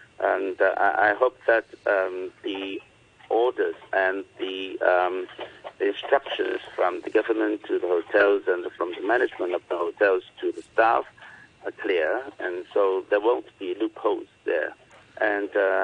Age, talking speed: 50-69, 150 wpm